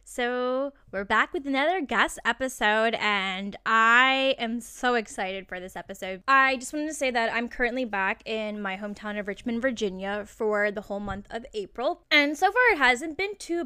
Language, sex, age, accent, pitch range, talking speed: English, female, 10-29, American, 205-270 Hz, 190 wpm